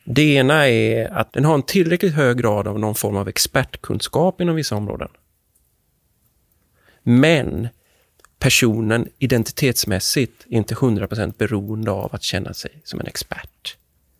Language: English